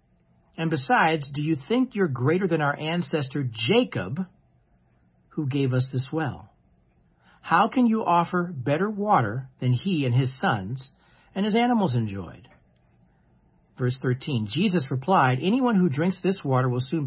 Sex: male